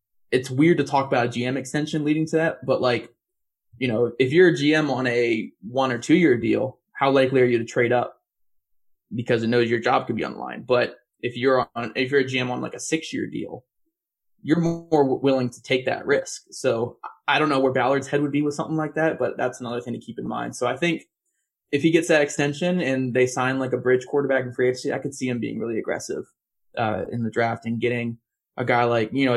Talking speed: 245 wpm